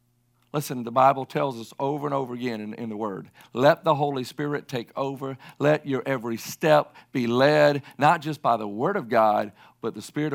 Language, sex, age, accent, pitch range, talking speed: English, male, 50-69, American, 130-165 Hz, 205 wpm